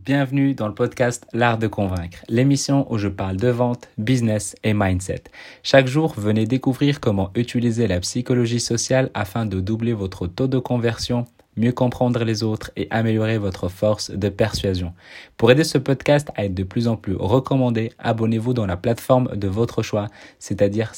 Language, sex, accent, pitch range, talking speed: French, male, French, 100-125 Hz, 175 wpm